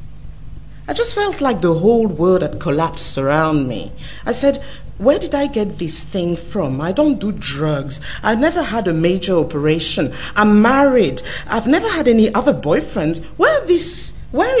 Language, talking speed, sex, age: English, 165 wpm, female, 50-69